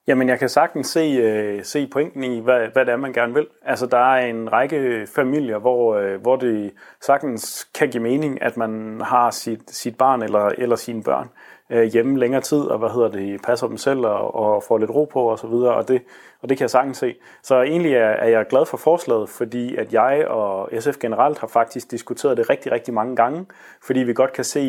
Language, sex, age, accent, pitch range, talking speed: Danish, male, 30-49, native, 110-130 Hz, 230 wpm